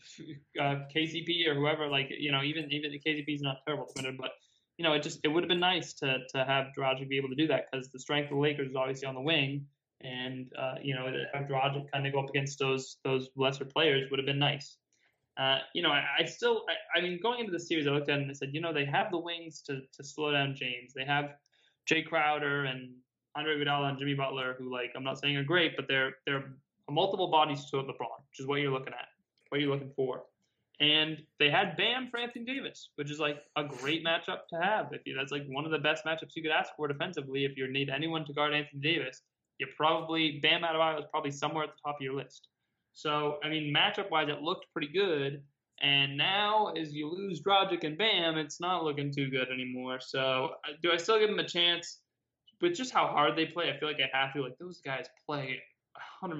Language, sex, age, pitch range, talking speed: English, male, 20-39, 135-160 Hz, 245 wpm